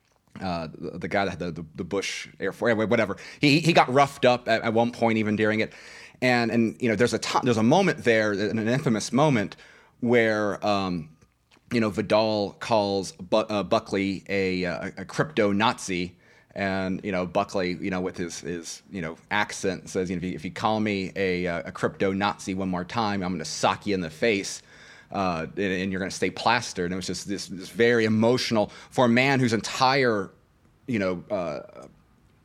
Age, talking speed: 30-49, 210 wpm